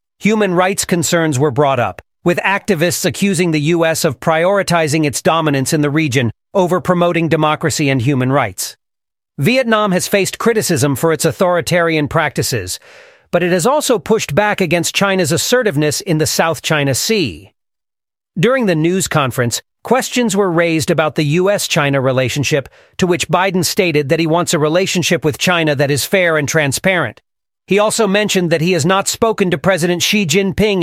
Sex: male